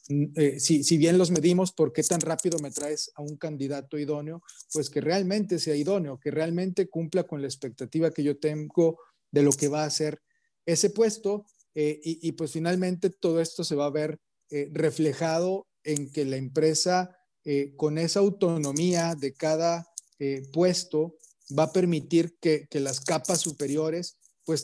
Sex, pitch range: male, 150-175 Hz